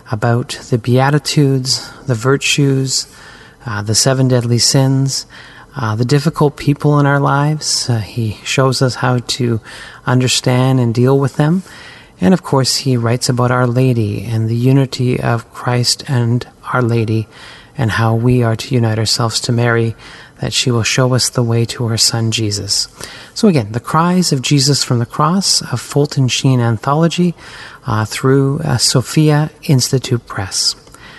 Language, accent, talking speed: English, American, 160 wpm